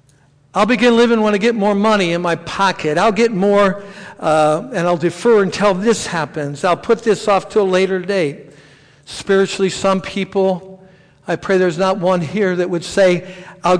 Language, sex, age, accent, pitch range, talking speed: English, male, 60-79, American, 145-180 Hz, 185 wpm